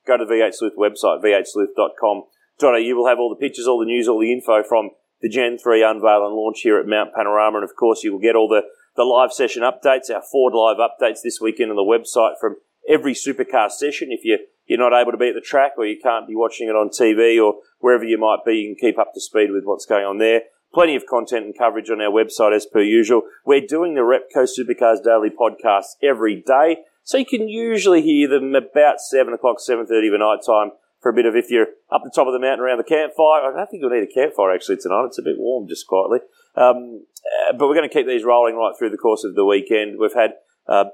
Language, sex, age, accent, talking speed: English, male, 30-49, Australian, 250 wpm